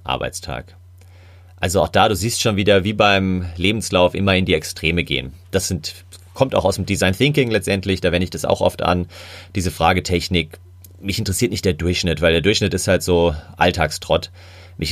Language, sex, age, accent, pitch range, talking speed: German, male, 30-49, German, 85-95 Hz, 185 wpm